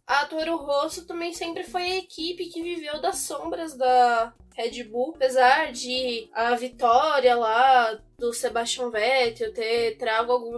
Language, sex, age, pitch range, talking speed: Portuguese, female, 10-29, 245-350 Hz, 145 wpm